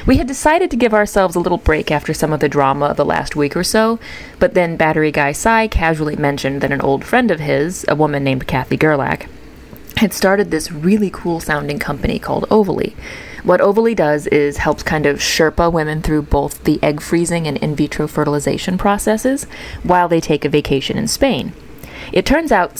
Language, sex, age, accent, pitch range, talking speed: English, female, 30-49, American, 150-195 Hz, 195 wpm